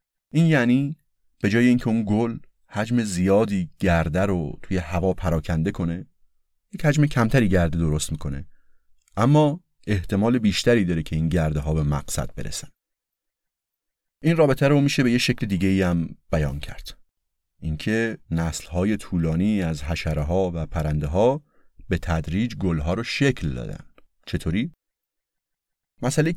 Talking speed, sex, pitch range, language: 135 wpm, male, 85-125 Hz, Persian